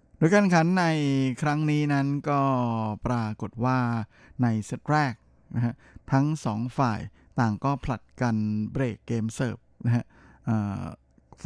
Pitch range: 115-135 Hz